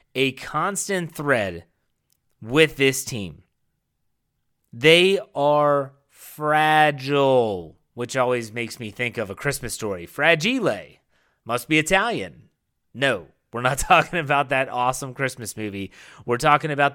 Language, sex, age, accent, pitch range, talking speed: English, male, 30-49, American, 125-155 Hz, 120 wpm